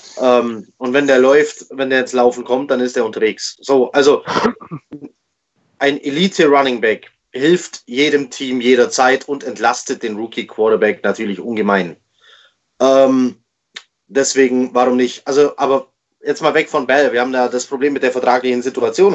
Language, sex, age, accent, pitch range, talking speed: German, male, 30-49, German, 125-145 Hz, 150 wpm